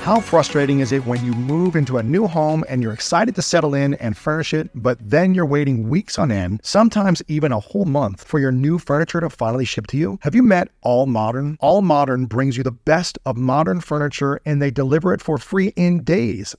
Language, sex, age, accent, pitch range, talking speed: English, male, 40-59, American, 125-165 Hz, 230 wpm